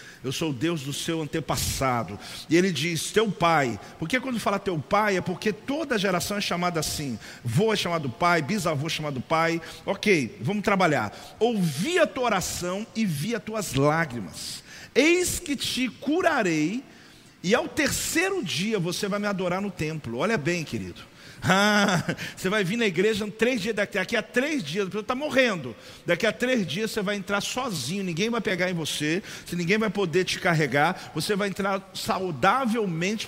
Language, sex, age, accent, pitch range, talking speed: Portuguese, male, 50-69, Brazilian, 165-220 Hz, 180 wpm